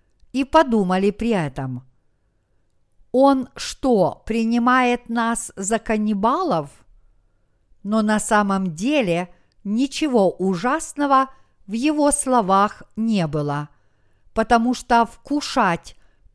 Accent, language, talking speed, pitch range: native, Russian, 90 wpm, 175-270 Hz